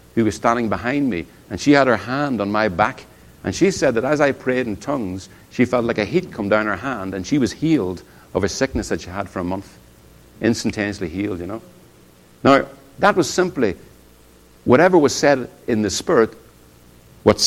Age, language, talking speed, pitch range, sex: 60-79, English, 205 wpm, 100-135 Hz, male